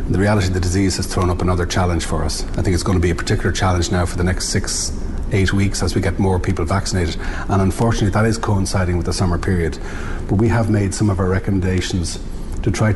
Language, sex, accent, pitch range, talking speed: English, male, Irish, 85-100 Hz, 245 wpm